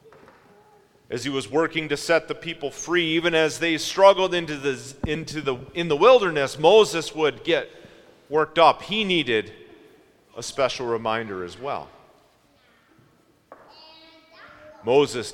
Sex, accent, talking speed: male, American, 130 wpm